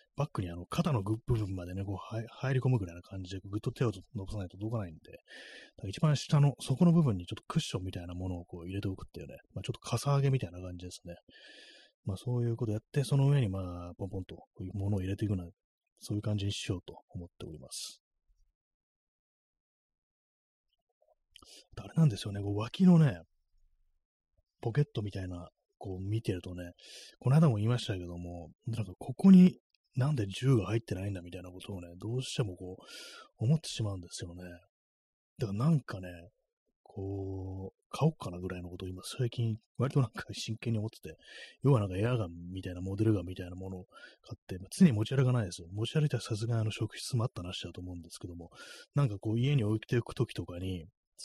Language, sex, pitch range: Japanese, male, 90-120 Hz